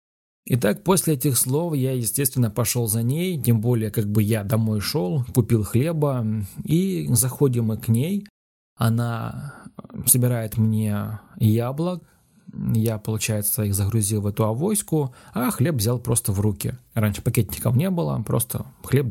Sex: male